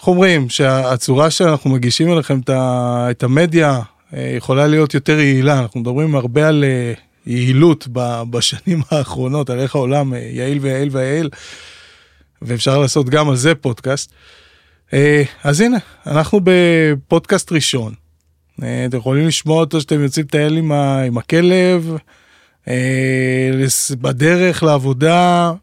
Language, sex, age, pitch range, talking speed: Hebrew, male, 20-39, 130-170 Hz, 110 wpm